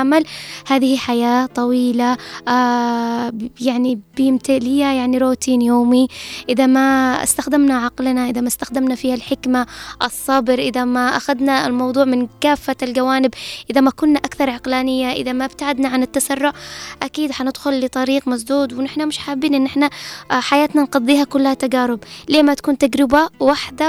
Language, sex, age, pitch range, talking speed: Arabic, female, 10-29, 260-295 Hz, 135 wpm